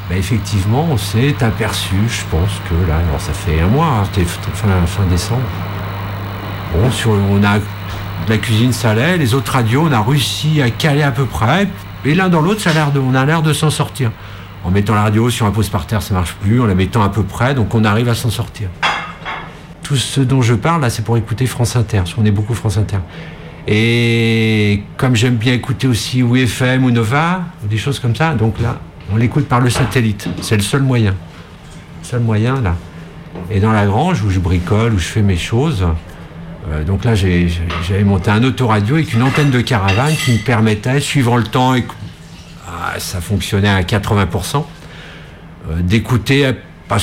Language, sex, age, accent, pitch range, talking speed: French, male, 50-69, French, 95-125 Hz, 210 wpm